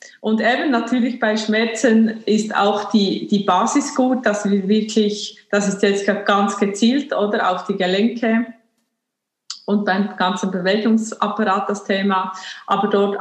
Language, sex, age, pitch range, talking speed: German, female, 20-39, 190-225 Hz, 140 wpm